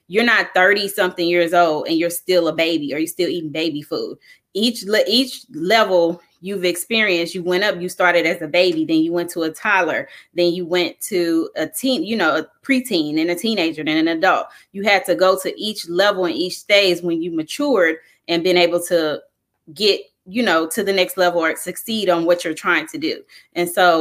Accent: American